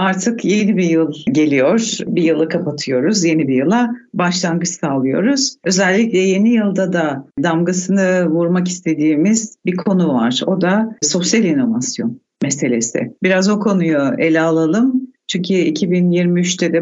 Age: 60-79